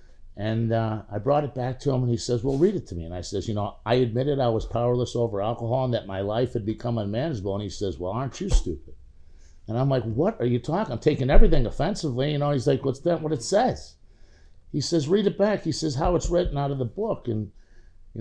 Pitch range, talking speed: 110-150 Hz, 255 wpm